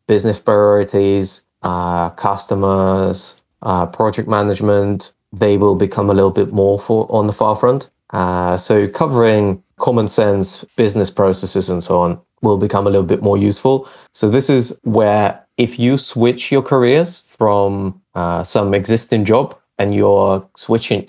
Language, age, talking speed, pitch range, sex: English, 20-39, 150 wpm, 95-115 Hz, male